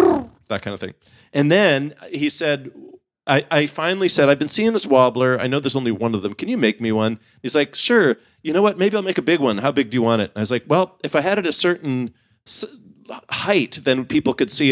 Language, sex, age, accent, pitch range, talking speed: English, male, 40-59, American, 115-150 Hz, 255 wpm